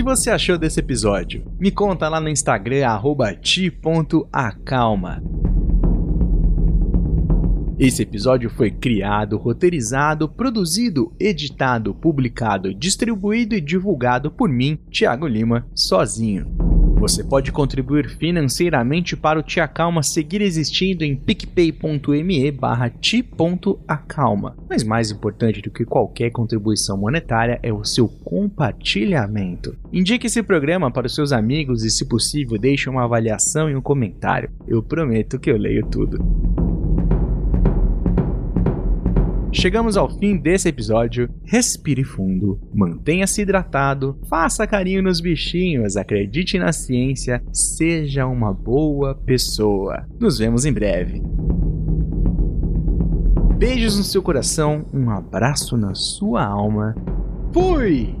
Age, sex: 30-49, male